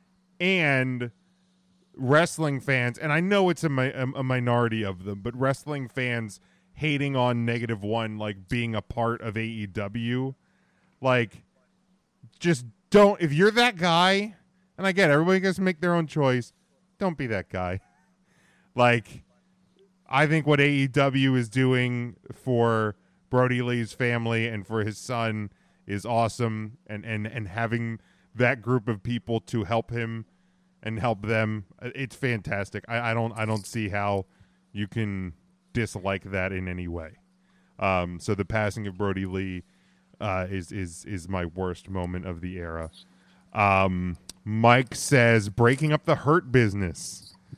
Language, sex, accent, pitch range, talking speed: English, male, American, 100-140 Hz, 150 wpm